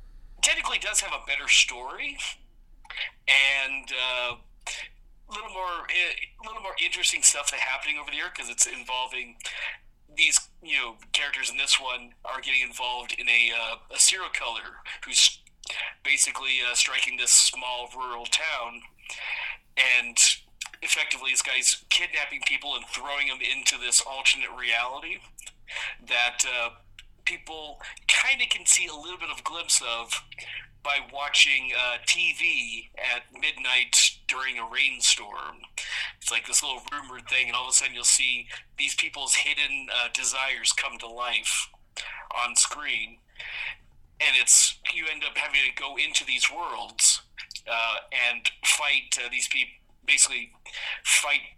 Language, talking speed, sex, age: English, 150 wpm, male, 40-59